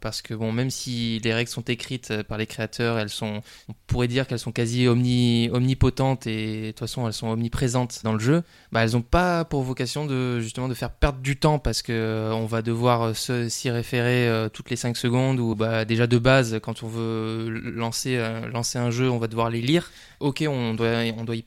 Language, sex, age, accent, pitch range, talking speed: French, male, 20-39, French, 115-135 Hz, 220 wpm